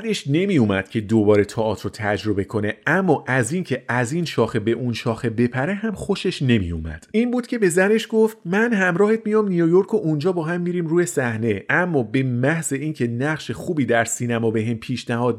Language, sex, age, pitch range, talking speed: Persian, male, 30-49, 115-170 Hz, 190 wpm